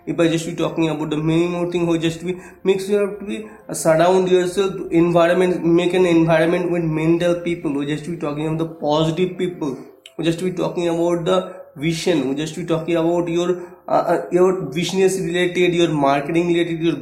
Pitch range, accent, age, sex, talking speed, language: 160-185 Hz, Indian, 20-39, male, 205 wpm, English